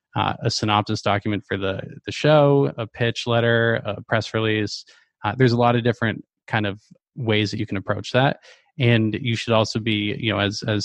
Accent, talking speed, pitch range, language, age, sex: American, 205 wpm, 105-125 Hz, English, 20-39, male